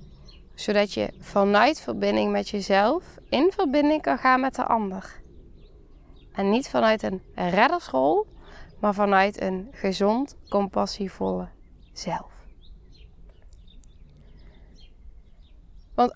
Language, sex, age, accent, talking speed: Dutch, female, 20-39, Dutch, 95 wpm